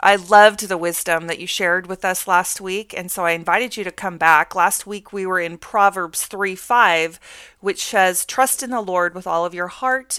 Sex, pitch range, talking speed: female, 180-225 Hz, 225 wpm